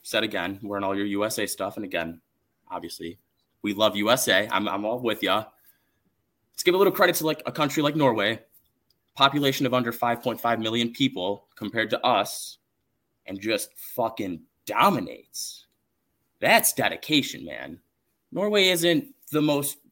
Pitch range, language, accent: 110-145 Hz, English, American